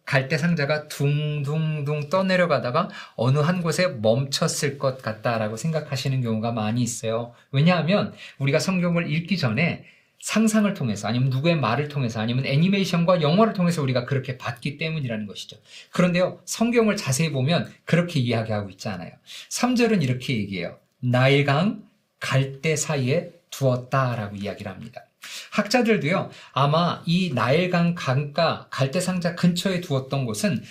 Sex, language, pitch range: male, Korean, 130-180 Hz